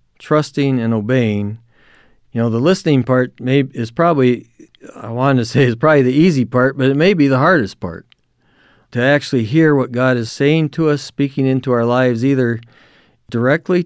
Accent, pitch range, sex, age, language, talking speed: American, 115-140 Hz, male, 50-69, English, 180 wpm